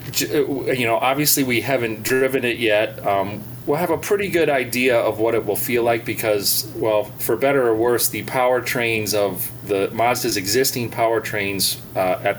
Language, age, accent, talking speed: English, 30-49, American, 175 wpm